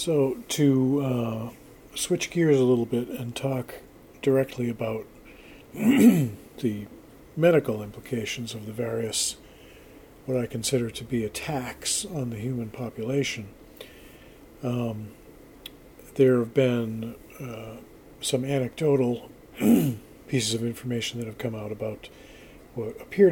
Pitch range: 115-135 Hz